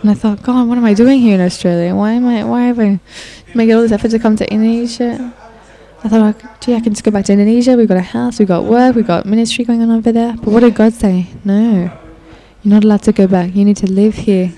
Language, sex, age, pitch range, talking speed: English, female, 10-29, 185-220 Hz, 270 wpm